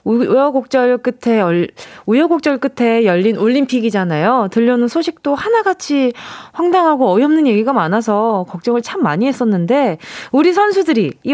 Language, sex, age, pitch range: Korean, female, 20-39, 205-315 Hz